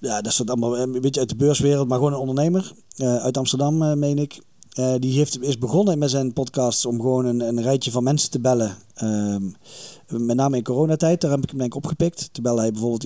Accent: Dutch